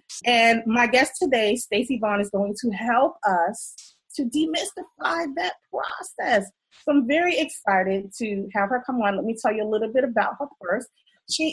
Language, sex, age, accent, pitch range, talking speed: English, female, 30-49, American, 205-270 Hz, 180 wpm